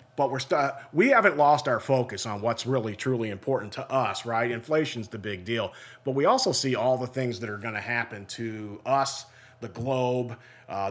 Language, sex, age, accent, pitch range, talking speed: English, male, 40-59, American, 115-140 Hz, 205 wpm